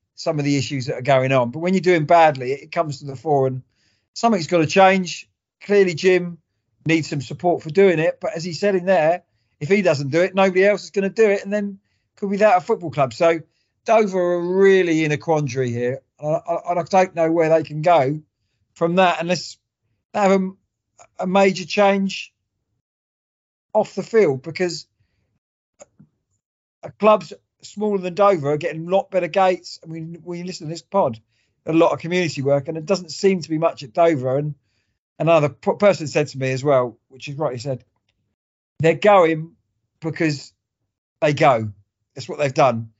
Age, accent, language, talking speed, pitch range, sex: 40-59, British, English, 200 wpm, 130-180 Hz, male